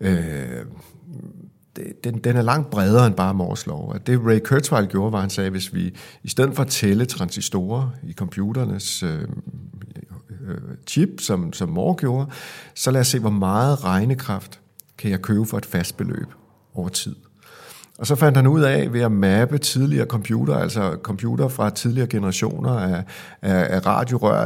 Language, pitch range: Danish, 100-130 Hz